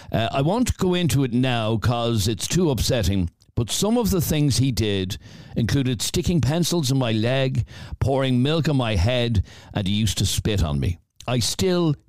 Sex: male